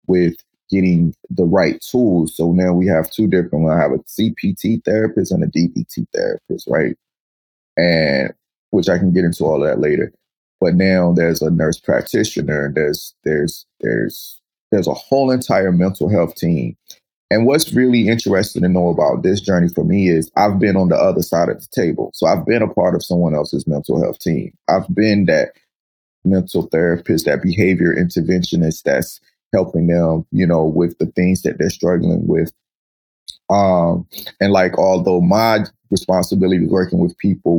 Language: English